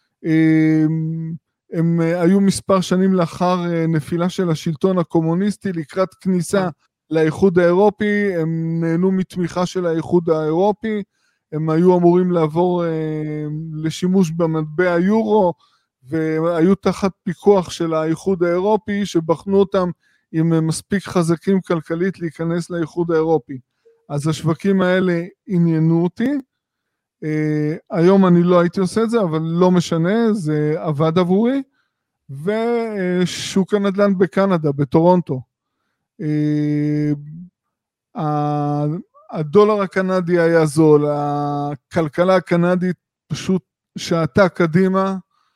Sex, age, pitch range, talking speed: male, 20-39, 160-195 Hz, 100 wpm